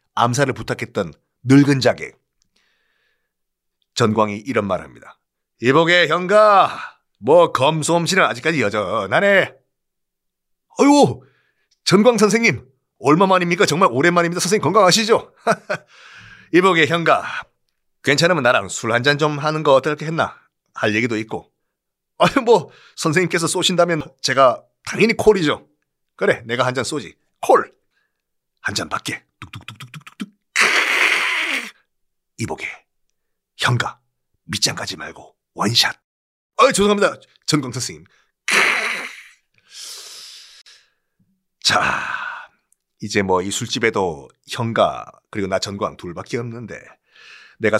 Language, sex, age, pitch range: Korean, male, 40-59, 115-175 Hz